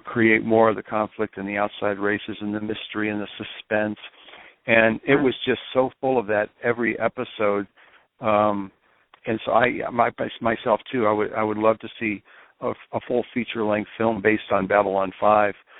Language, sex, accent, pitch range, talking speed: English, male, American, 105-115 Hz, 185 wpm